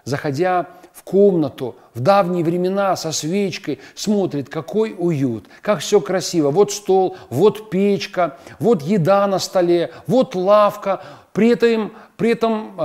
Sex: male